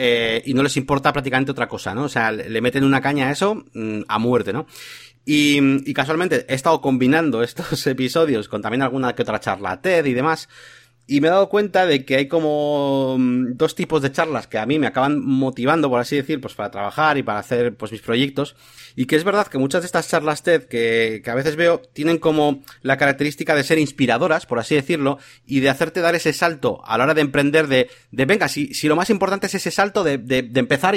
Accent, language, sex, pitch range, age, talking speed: Spanish, Spanish, male, 130-160 Hz, 30-49, 230 wpm